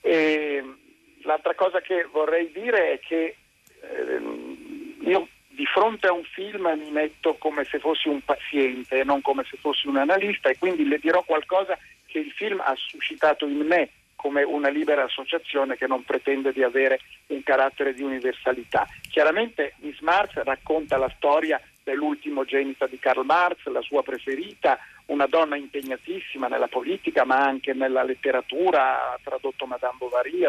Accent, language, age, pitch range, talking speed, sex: native, Italian, 50-69, 140-210 Hz, 155 wpm, male